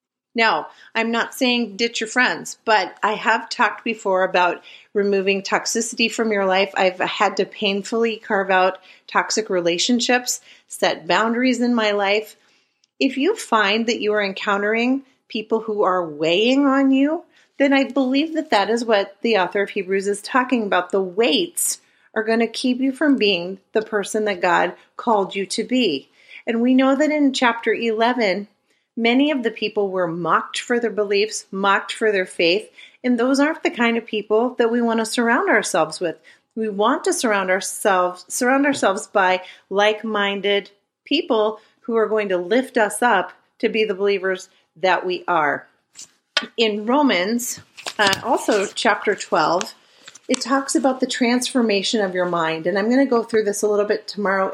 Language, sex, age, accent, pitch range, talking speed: English, female, 40-59, American, 200-250 Hz, 175 wpm